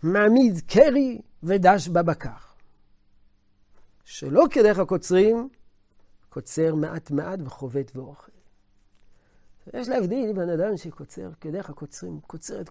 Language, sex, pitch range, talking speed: Hebrew, male, 135-215 Hz, 95 wpm